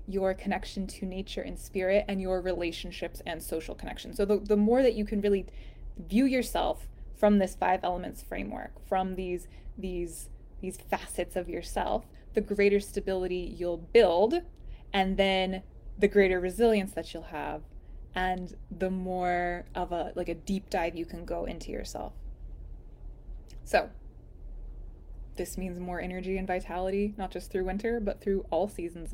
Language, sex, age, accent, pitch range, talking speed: English, female, 20-39, American, 180-205 Hz, 155 wpm